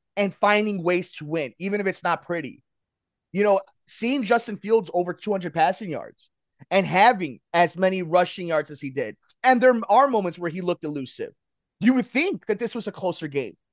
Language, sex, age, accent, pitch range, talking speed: English, male, 30-49, American, 175-225 Hz, 200 wpm